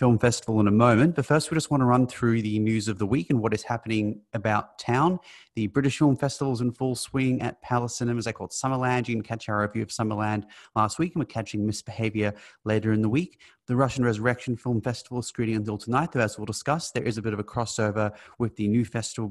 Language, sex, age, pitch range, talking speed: English, male, 30-49, 105-130 Hz, 245 wpm